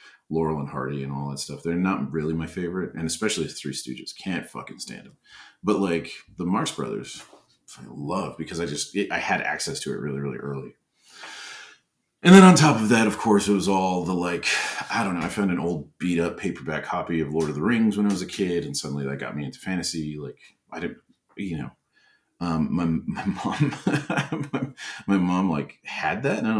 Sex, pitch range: male, 75-95 Hz